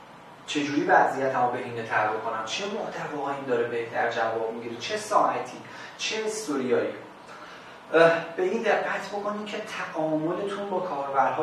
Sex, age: male, 30-49